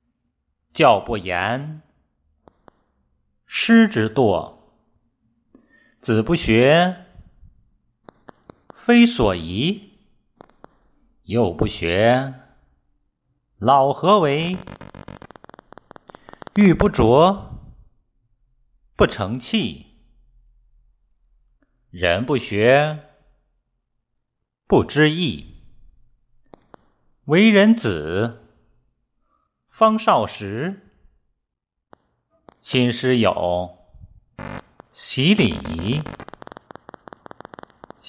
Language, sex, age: Chinese, male, 50-69